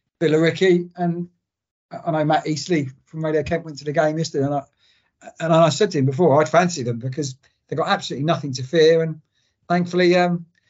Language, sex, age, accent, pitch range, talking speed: English, male, 50-69, British, 130-175 Hz, 195 wpm